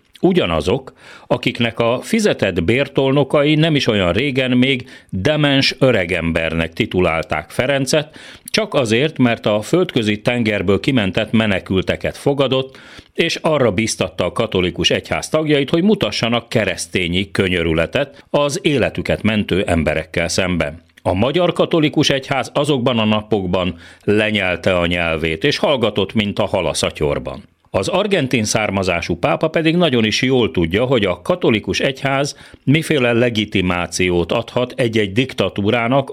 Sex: male